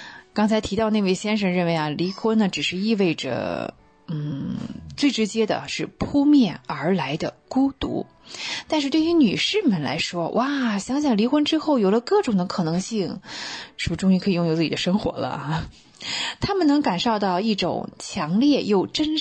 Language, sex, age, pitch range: Chinese, female, 20-39, 175-245 Hz